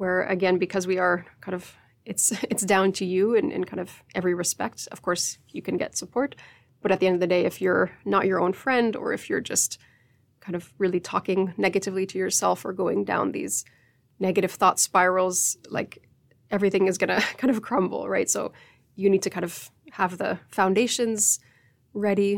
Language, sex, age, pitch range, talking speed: Finnish, female, 20-39, 180-205 Hz, 195 wpm